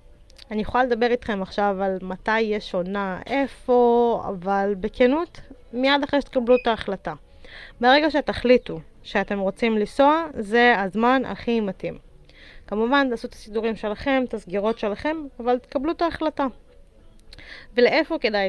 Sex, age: female, 20-39